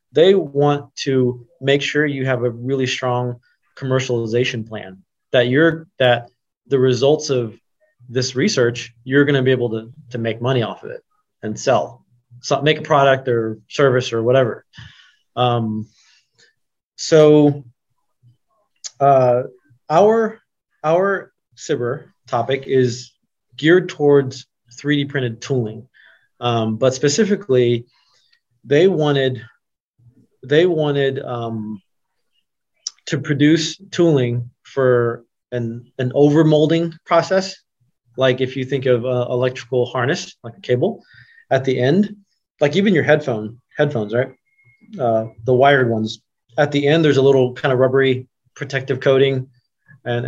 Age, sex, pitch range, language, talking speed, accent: 20-39, male, 120-145 Hz, English, 130 wpm, American